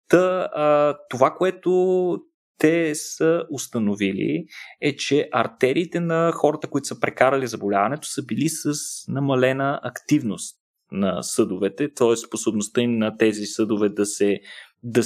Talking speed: 120 wpm